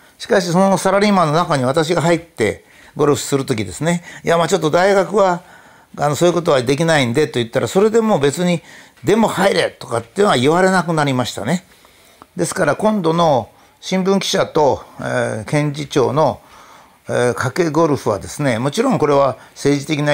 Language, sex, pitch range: Japanese, male, 140-180 Hz